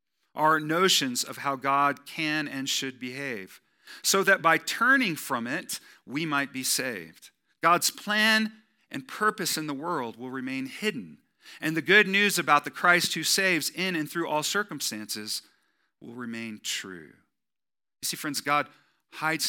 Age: 40-59